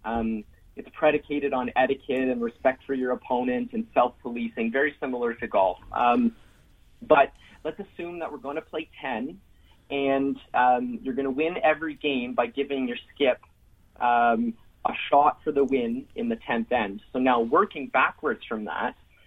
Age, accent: 30-49, American